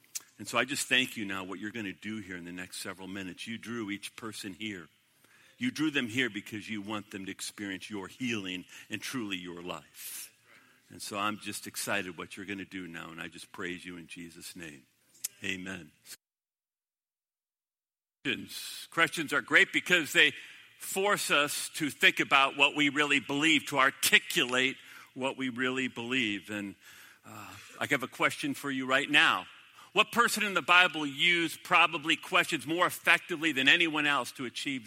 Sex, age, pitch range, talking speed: male, 50-69, 100-150 Hz, 180 wpm